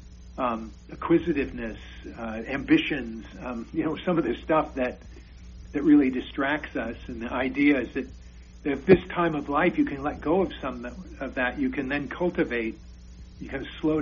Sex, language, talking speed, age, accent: male, English, 175 wpm, 50-69, American